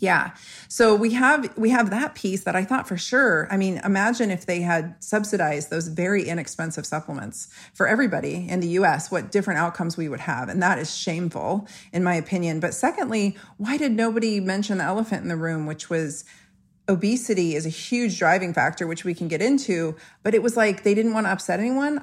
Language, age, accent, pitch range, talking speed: English, 40-59, American, 175-225 Hz, 205 wpm